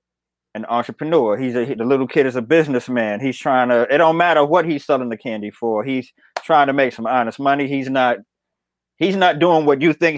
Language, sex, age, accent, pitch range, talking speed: English, male, 30-49, American, 130-160 Hz, 205 wpm